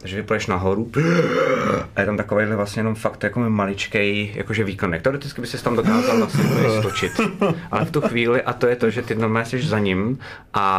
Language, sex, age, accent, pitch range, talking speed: Czech, male, 30-49, native, 105-120 Hz, 195 wpm